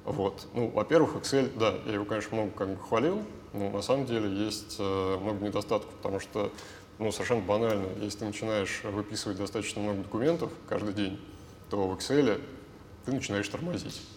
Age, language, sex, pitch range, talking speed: 20-39, Russian, male, 100-110 Hz, 165 wpm